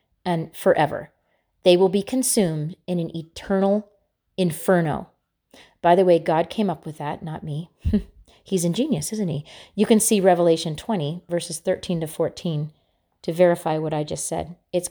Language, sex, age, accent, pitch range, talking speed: English, female, 30-49, American, 165-225 Hz, 160 wpm